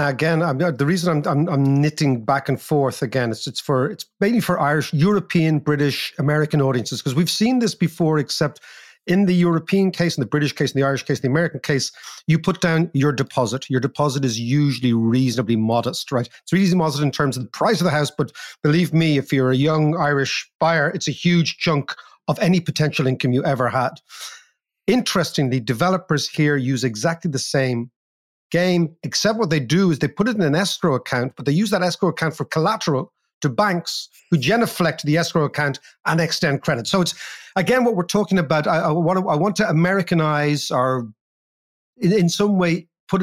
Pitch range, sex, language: 140-175 Hz, male, English